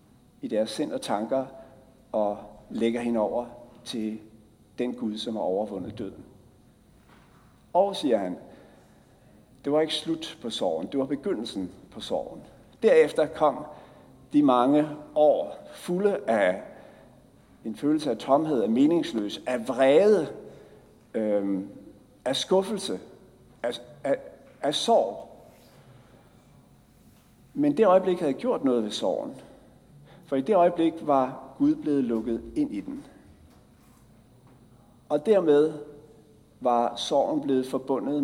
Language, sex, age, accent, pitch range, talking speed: Danish, male, 60-79, native, 115-160 Hz, 115 wpm